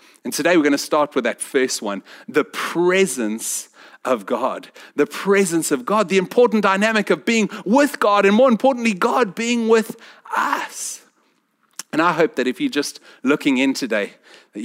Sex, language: male, English